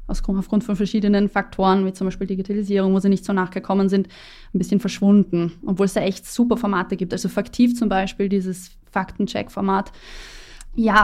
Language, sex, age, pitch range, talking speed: German, female, 20-39, 195-215 Hz, 170 wpm